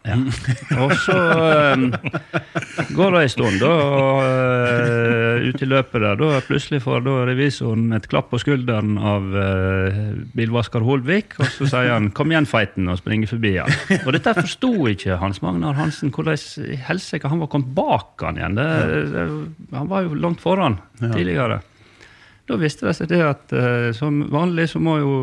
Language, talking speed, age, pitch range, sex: English, 165 wpm, 30-49, 125-165 Hz, male